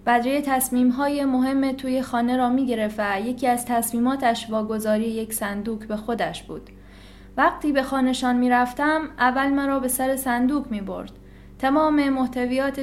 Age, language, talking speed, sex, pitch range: 10-29, Persian, 140 wpm, female, 220-265 Hz